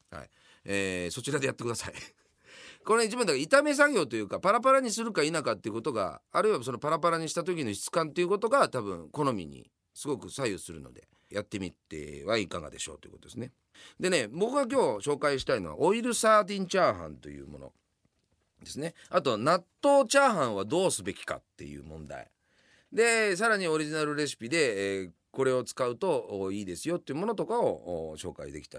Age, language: 40-59, Japanese